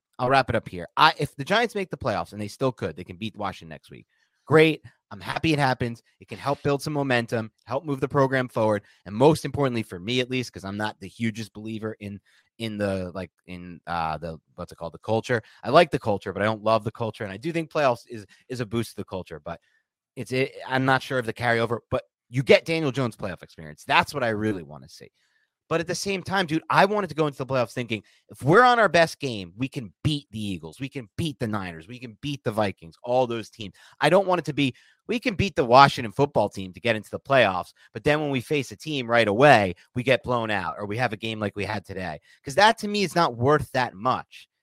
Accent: American